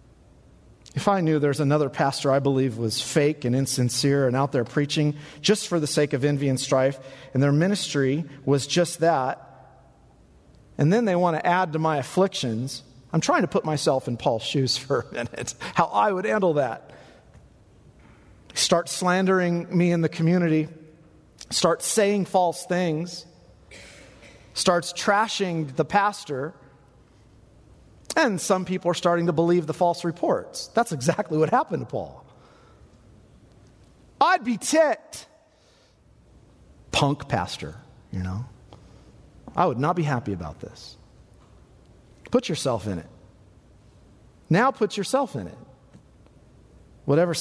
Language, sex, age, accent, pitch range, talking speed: English, male, 40-59, American, 135-180 Hz, 140 wpm